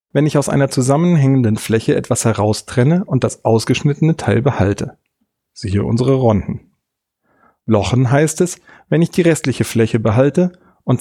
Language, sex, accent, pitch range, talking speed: German, male, German, 105-145 Hz, 140 wpm